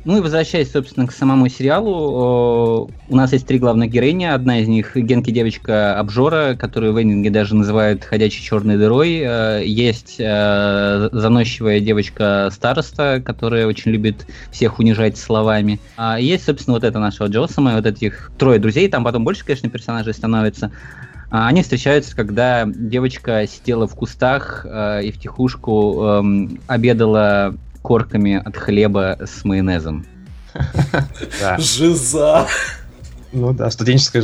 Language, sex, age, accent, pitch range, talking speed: Russian, male, 20-39, native, 105-130 Hz, 130 wpm